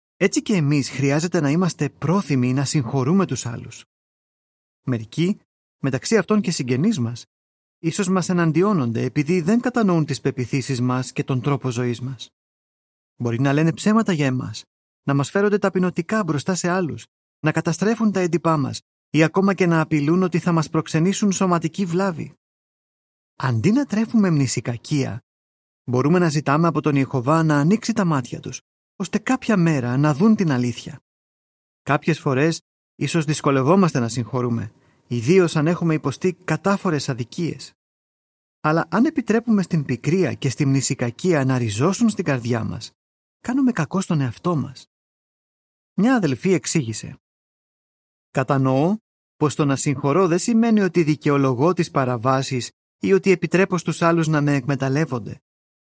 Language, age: Greek, 30-49